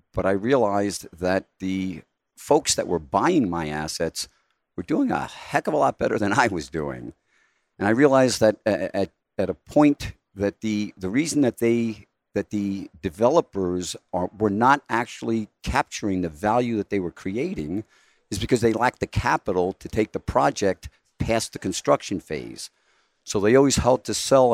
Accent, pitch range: American, 95-115 Hz